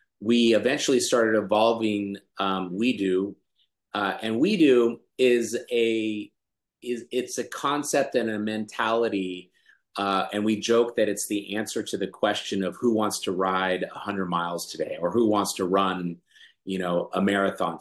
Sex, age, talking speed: male, 30-49, 160 wpm